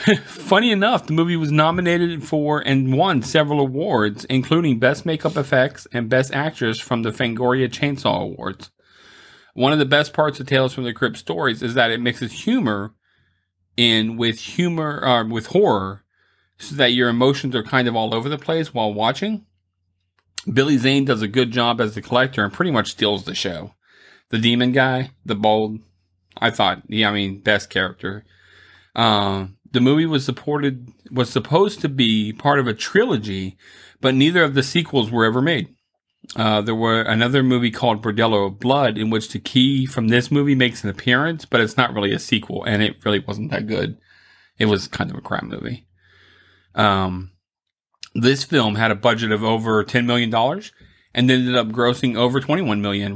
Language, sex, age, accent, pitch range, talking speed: English, male, 40-59, American, 105-140 Hz, 185 wpm